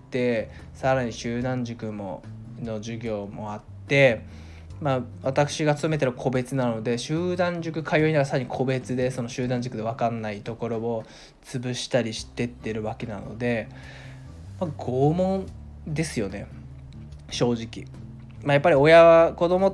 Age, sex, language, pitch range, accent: 20-39, male, Japanese, 115-150 Hz, native